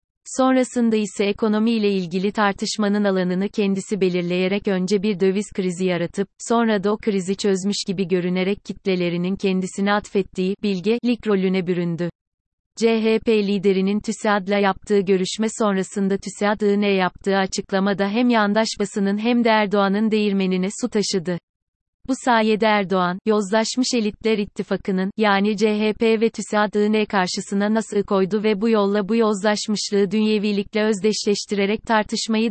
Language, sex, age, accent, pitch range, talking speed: Turkish, female, 30-49, native, 195-220 Hz, 120 wpm